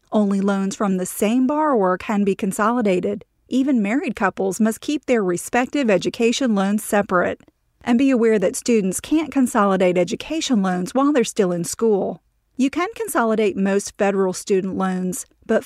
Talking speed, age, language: 155 wpm, 40-59, English